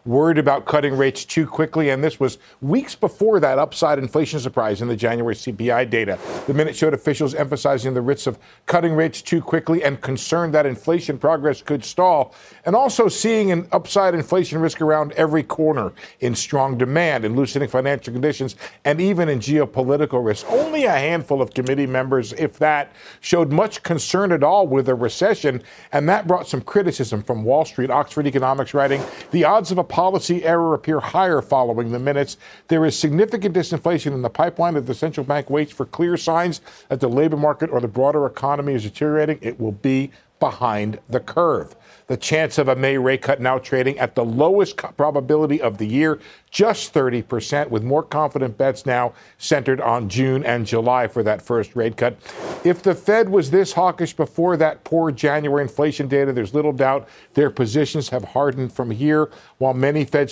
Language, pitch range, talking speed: English, 130-160 Hz, 185 wpm